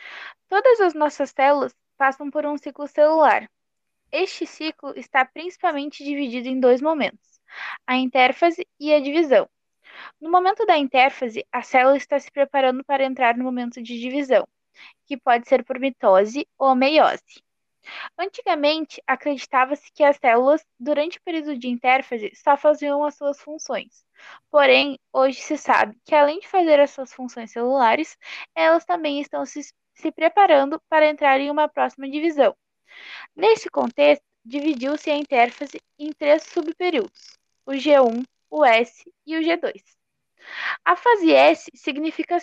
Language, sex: Portuguese, female